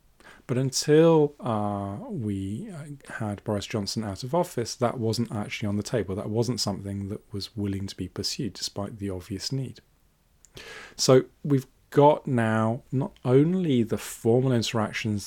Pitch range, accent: 100-125 Hz, British